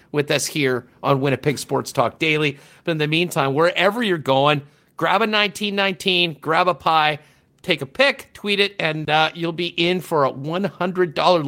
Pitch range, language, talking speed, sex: 140-180 Hz, English, 180 wpm, male